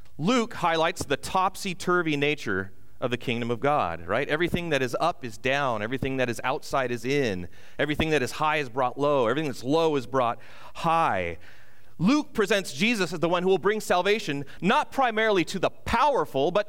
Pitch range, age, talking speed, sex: 135-210 Hz, 30-49, 190 wpm, male